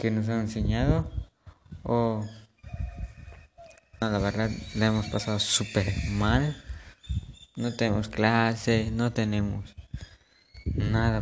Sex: male